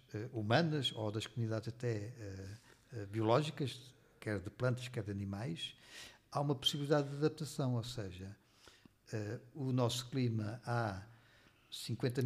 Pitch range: 120-150 Hz